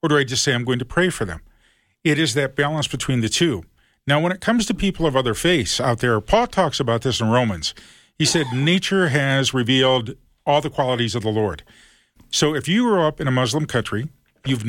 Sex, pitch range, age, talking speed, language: male, 120-155 Hz, 40-59, 230 wpm, English